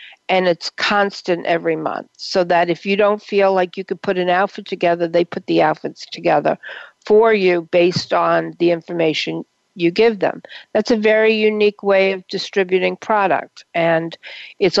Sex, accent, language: female, American, English